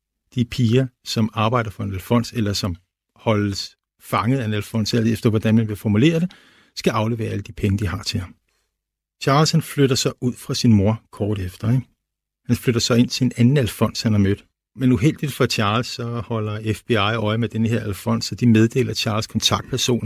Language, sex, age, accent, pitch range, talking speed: Danish, male, 50-69, native, 105-125 Hz, 205 wpm